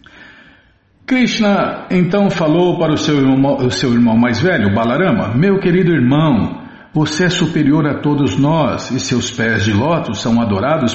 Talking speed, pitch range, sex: 150 wpm, 135-175 Hz, male